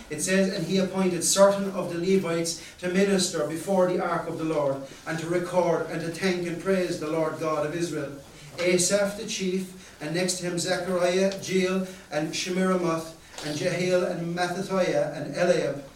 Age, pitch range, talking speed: 40-59, 155-185 Hz, 175 wpm